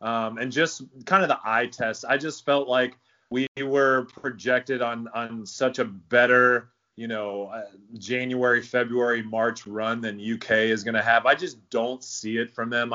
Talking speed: 185 wpm